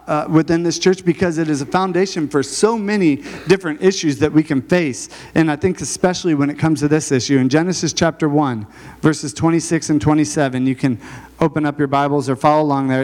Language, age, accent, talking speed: English, 40-59, American, 210 wpm